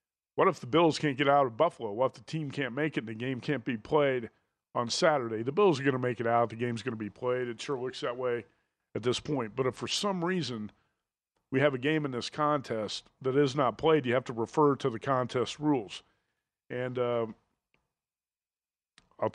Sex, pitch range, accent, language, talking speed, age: male, 120-150 Hz, American, English, 225 wpm, 50-69